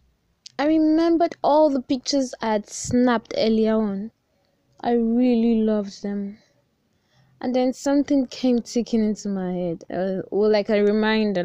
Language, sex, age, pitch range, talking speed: English, female, 10-29, 185-255 Hz, 135 wpm